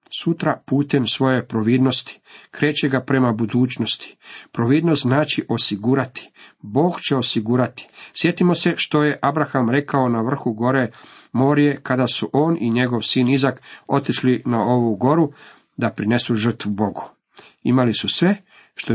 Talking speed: 135 wpm